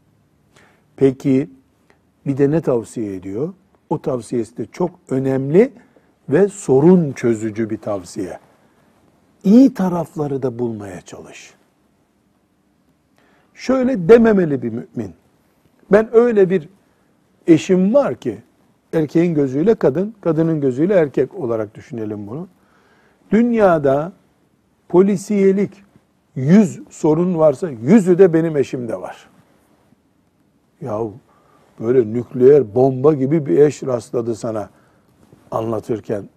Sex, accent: male, native